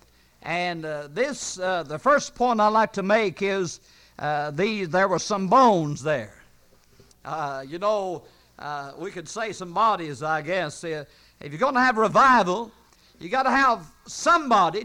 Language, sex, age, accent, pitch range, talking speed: English, male, 60-79, American, 160-225 Hz, 170 wpm